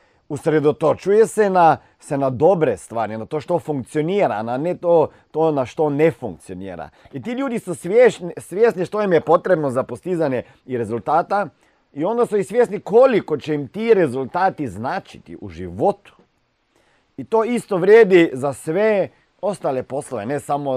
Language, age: Croatian, 40-59